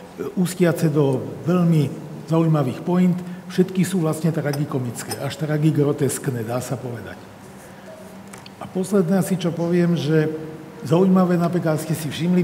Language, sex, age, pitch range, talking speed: Slovak, male, 50-69, 140-165 Hz, 120 wpm